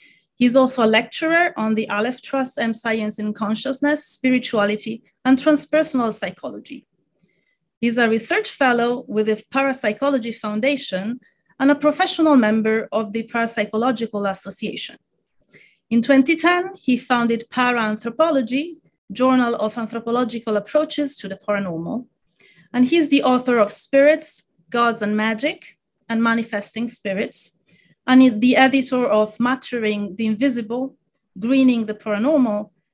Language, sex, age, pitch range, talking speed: English, female, 30-49, 215-270 Hz, 120 wpm